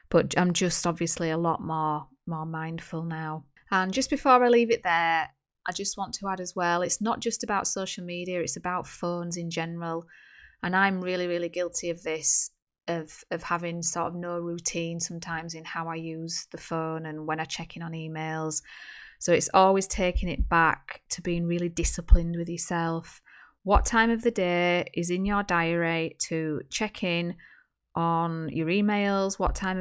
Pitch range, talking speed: 165-190 Hz, 185 wpm